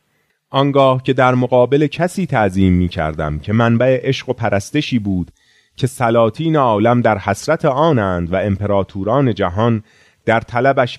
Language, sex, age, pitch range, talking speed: Persian, male, 30-49, 100-135 Hz, 135 wpm